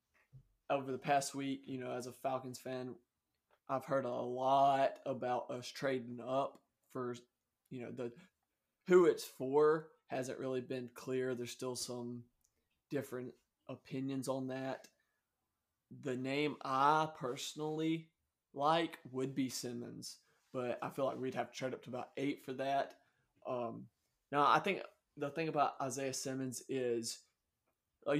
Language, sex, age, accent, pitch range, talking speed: English, male, 20-39, American, 125-145 Hz, 145 wpm